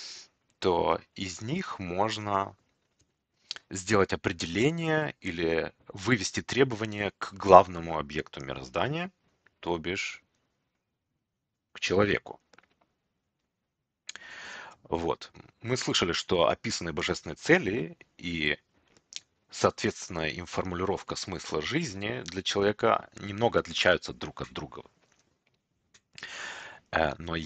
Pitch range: 80-115 Hz